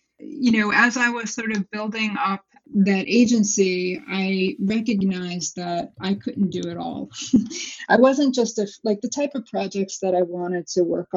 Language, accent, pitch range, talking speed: English, American, 180-215 Hz, 175 wpm